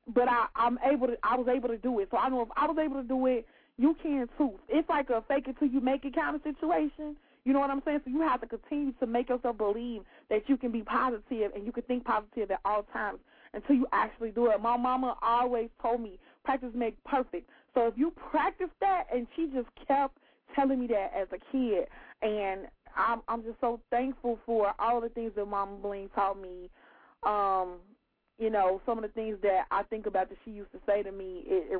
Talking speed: 240 wpm